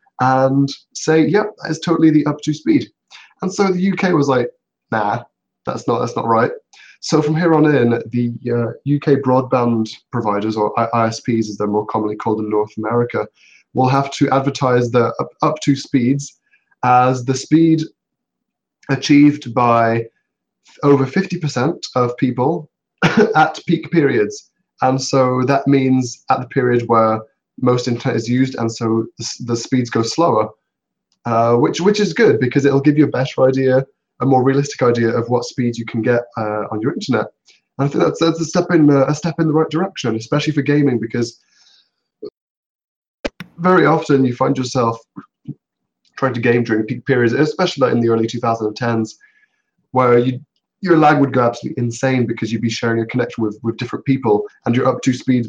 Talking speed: 185 wpm